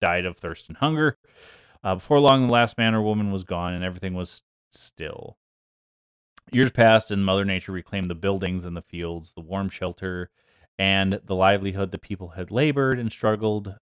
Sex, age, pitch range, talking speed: male, 30-49, 95-115 Hz, 180 wpm